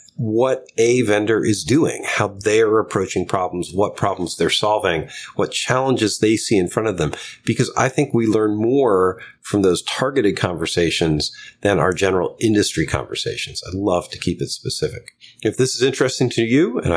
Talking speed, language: 175 wpm, English